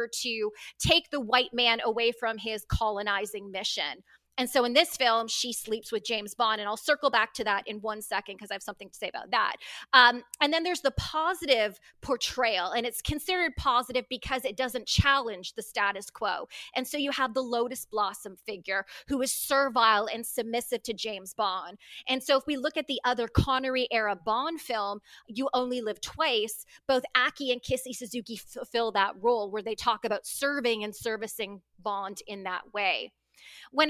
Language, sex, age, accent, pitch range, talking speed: English, female, 30-49, American, 215-260 Hz, 190 wpm